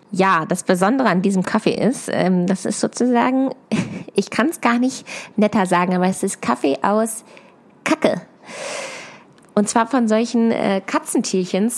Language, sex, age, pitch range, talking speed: German, female, 20-39, 180-225 Hz, 155 wpm